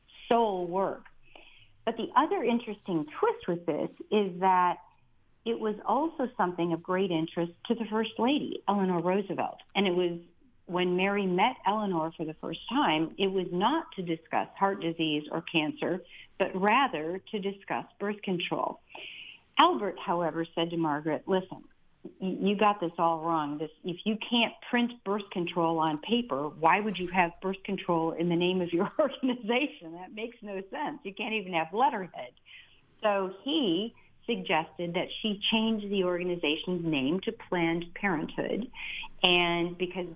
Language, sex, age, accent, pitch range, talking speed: English, female, 50-69, American, 165-205 Hz, 155 wpm